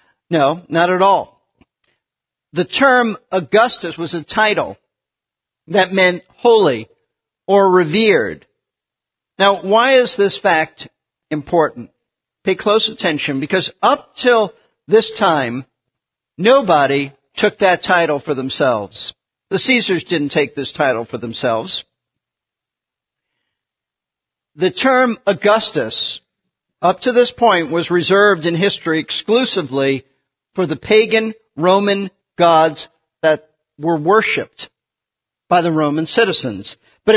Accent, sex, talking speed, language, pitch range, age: American, male, 110 wpm, English, 160-220 Hz, 50-69